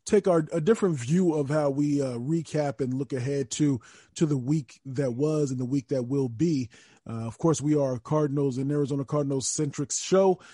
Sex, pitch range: male, 135-160 Hz